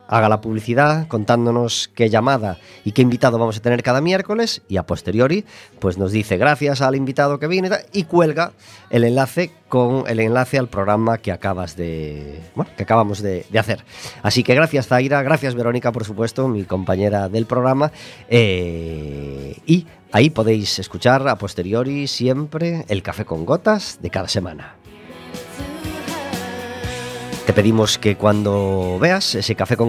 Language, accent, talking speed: Spanish, Spanish, 155 wpm